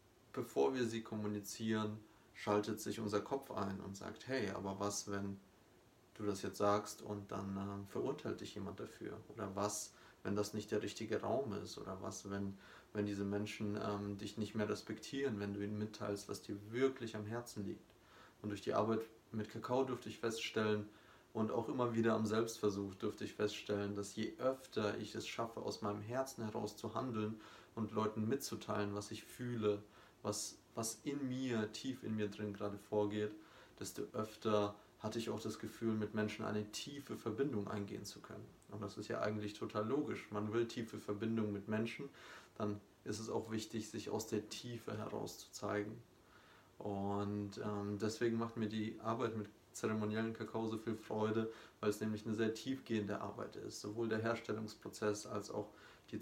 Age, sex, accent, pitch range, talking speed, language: 30-49, male, German, 105-115 Hz, 180 wpm, German